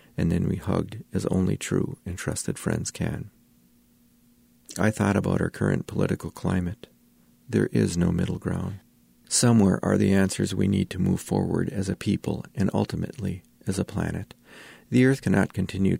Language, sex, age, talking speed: English, male, 40-59, 165 wpm